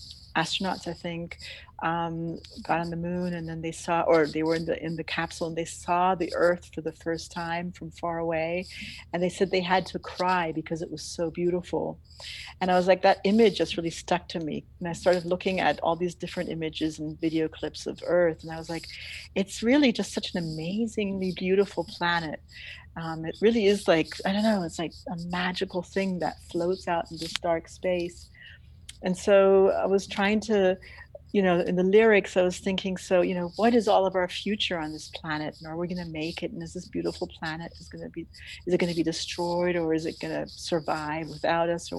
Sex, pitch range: female, 160-185 Hz